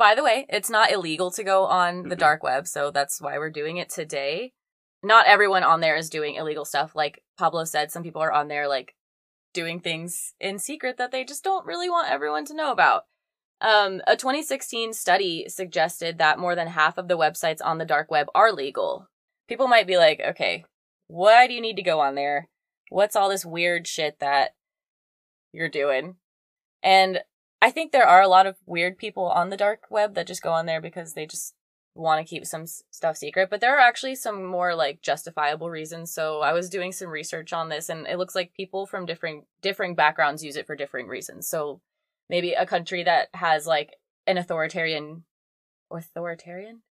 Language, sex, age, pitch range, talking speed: English, female, 20-39, 155-195 Hz, 200 wpm